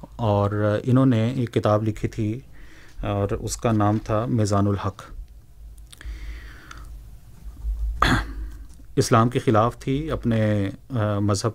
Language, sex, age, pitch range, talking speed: Urdu, male, 30-49, 105-125 Hz, 105 wpm